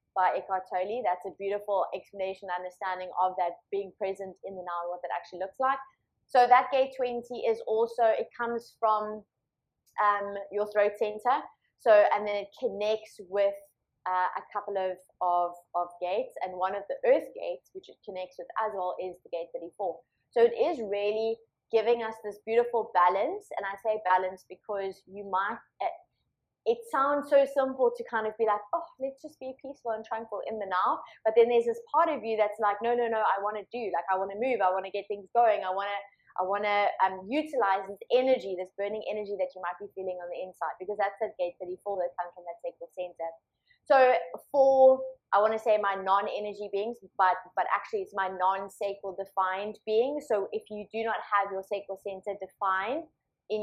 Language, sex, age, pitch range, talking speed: English, female, 20-39, 190-235 Hz, 210 wpm